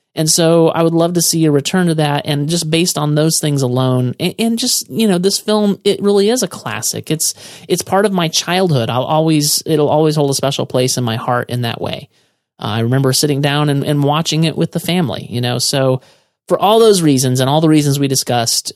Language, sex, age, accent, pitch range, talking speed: English, male, 30-49, American, 125-160 Hz, 235 wpm